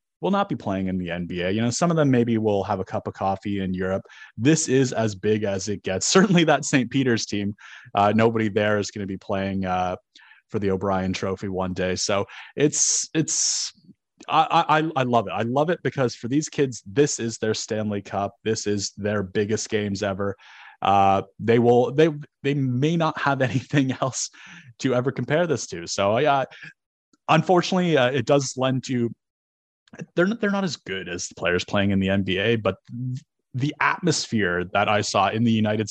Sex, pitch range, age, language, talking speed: male, 100-135 Hz, 30-49, English, 200 wpm